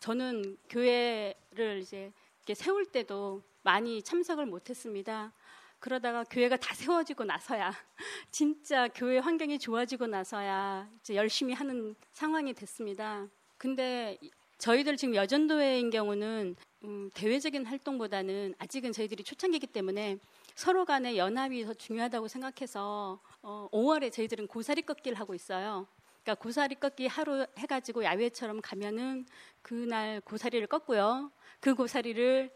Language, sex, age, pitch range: Korean, female, 30-49, 205-260 Hz